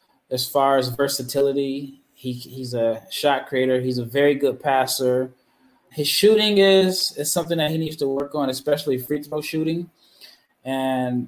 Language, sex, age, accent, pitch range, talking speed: English, male, 20-39, American, 130-150 Hz, 160 wpm